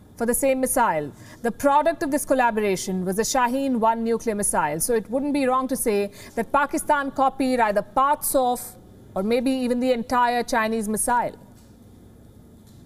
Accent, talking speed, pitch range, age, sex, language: Indian, 160 wpm, 230-275 Hz, 50-69, female, English